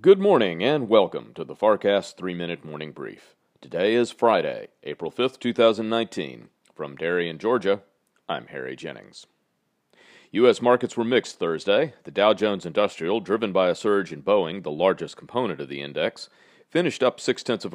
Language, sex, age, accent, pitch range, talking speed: English, male, 40-59, American, 85-115 Hz, 165 wpm